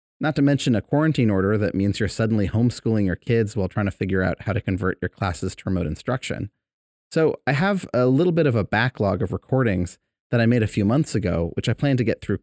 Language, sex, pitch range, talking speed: English, male, 95-120 Hz, 240 wpm